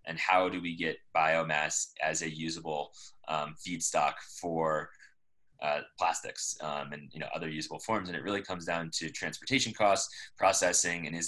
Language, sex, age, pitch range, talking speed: English, male, 20-39, 80-95 Hz, 160 wpm